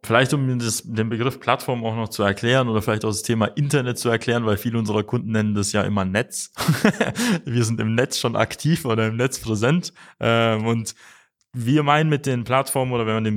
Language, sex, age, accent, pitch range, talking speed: German, male, 20-39, German, 110-145 Hz, 205 wpm